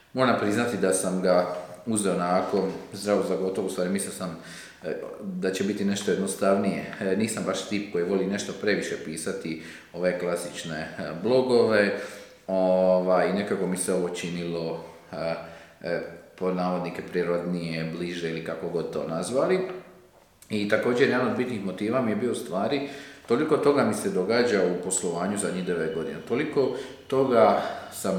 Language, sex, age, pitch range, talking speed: Croatian, male, 40-59, 90-120 Hz, 140 wpm